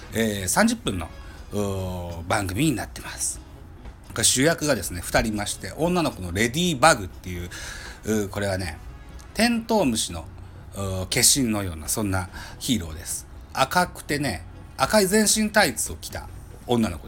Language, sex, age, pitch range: Japanese, male, 40-59, 90-150 Hz